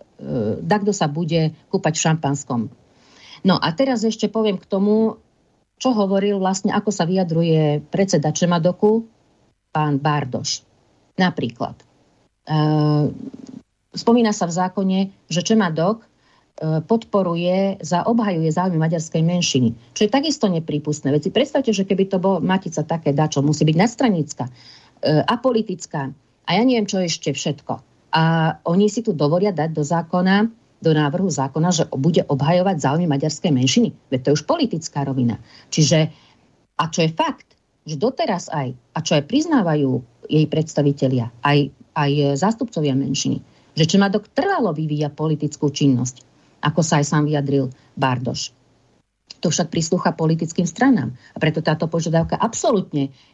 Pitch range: 145-195 Hz